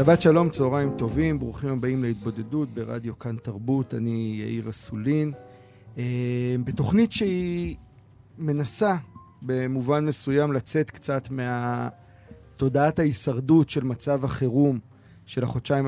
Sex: male